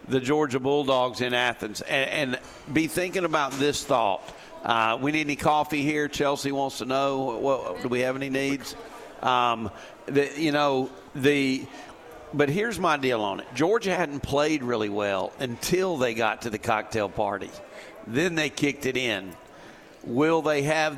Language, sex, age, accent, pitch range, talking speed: English, male, 50-69, American, 130-150 Hz, 165 wpm